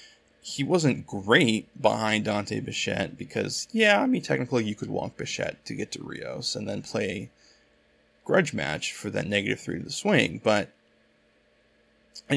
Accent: American